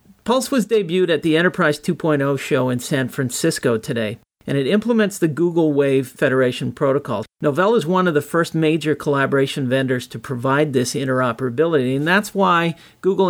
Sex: male